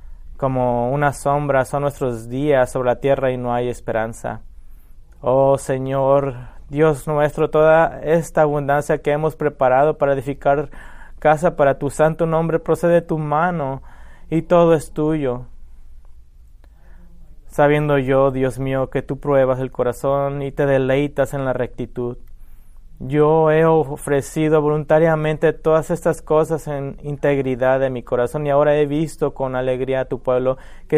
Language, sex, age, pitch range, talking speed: English, male, 30-49, 125-150 Hz, 145 wpm